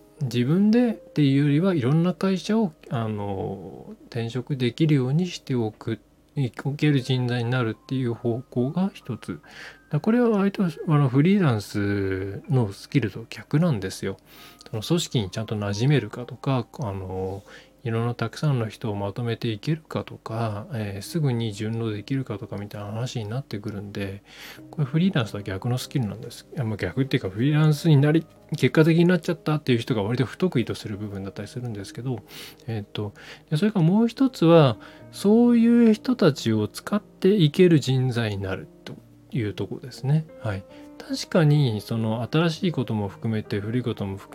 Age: 20-39